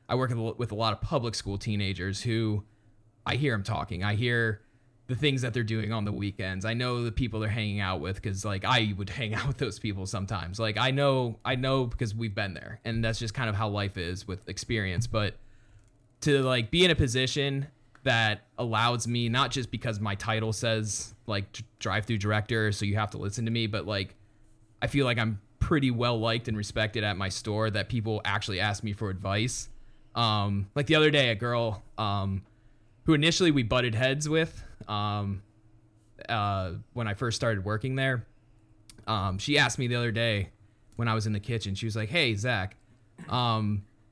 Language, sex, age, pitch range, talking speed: English, male, 20-39, 105-120 Hz, 205 wpm